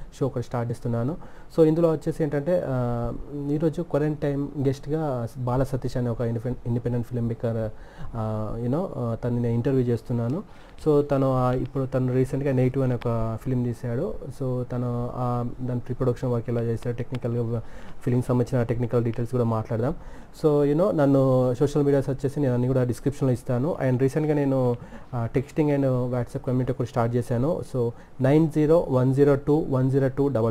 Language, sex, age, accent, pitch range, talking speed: Telugu, male, 30-49, native, 120-135 Hz, 140 wpm